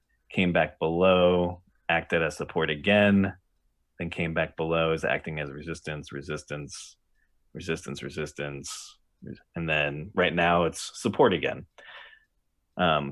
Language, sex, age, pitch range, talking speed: English, male, 30-49, 80-95 Hz, 120 wpm